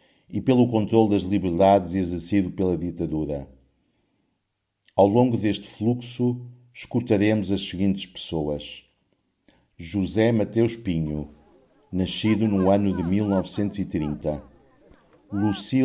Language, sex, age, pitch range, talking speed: Portuguese, male, 50-69, 85-105 Hz, 95 wpm